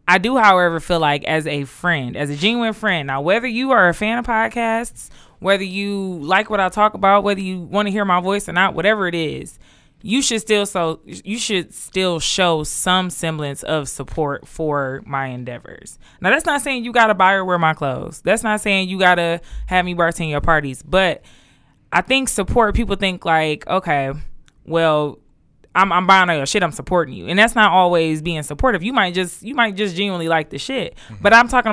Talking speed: 210 wpm